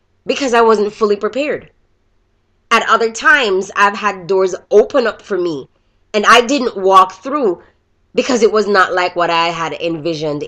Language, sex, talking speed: English, female, 165 wpm